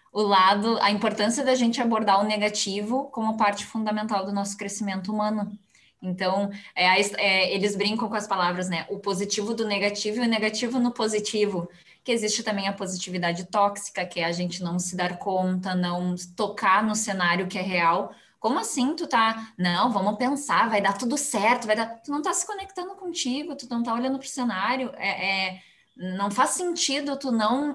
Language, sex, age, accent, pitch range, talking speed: Portuguese, female, 20-39, Brazilian, 190-225 Hz, 185 wpm